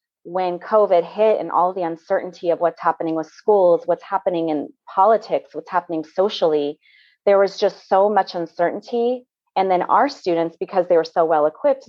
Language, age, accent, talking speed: English, 30-49, American, 170 wpm